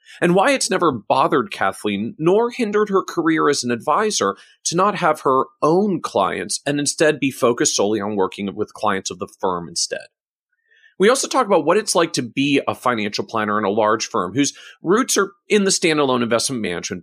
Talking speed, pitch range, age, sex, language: 195 wpm, 115-185 Hz, 40-59, male, English